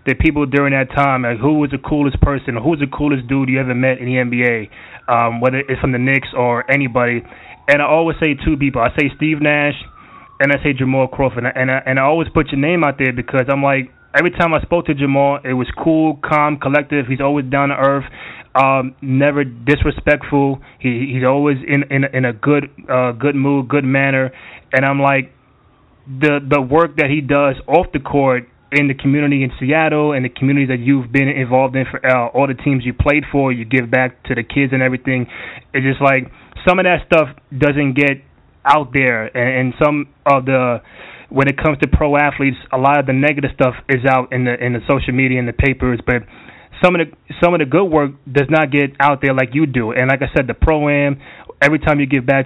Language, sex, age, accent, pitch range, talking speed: English, male, 20-39, American, 130-145 Hz, 230 wpm